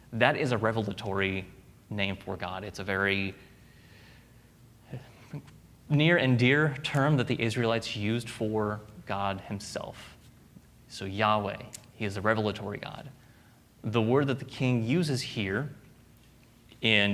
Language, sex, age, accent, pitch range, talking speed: English, male, 30-49, American, 105-125 Hz, 125 wpm